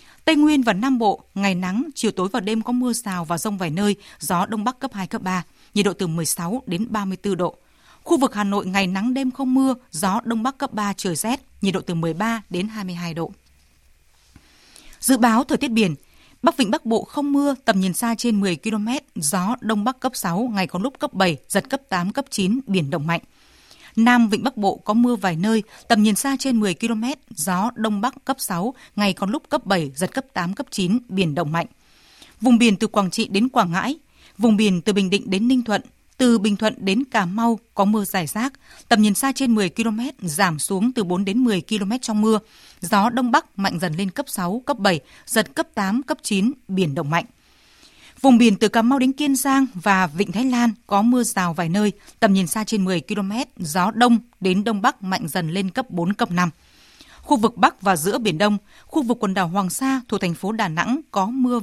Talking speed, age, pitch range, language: 230 wpm, 20-39, 190-245 Hz, Vietnamese